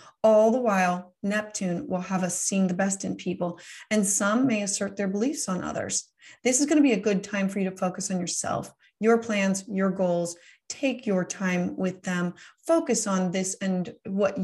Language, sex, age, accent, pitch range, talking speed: English, female, 30-49, American, 195-245 Hz, 200 wpm